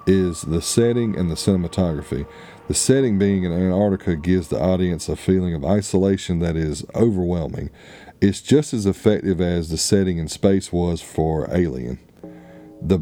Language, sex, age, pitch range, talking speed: English, male, 40-59, 85-100 Hz, 155 wpm